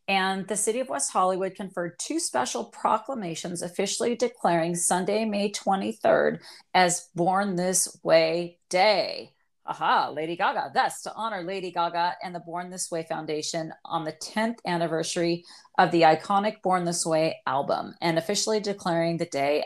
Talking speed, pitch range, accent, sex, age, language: 155 wpm, 170-205 Hz, American, female, 40-59, English